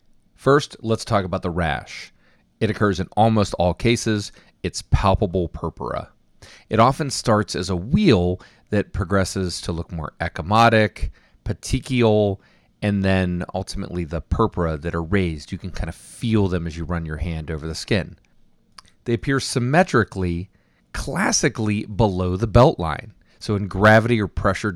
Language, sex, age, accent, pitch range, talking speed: English, male, 30-49, American, 90-115 Hz, 155 wpm